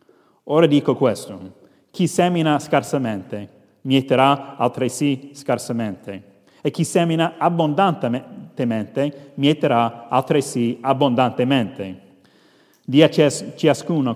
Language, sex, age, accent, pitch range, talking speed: Italian, male, 30-49, native, 115-140 Hz, 80 wpm